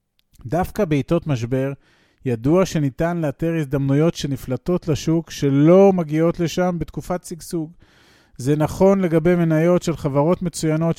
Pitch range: 140-175 Hz